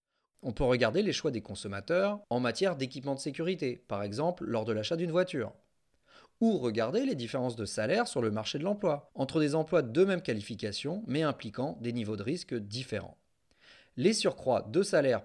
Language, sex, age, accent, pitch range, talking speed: French, male, 40-59, French, 115-180 Hz, 185 wpm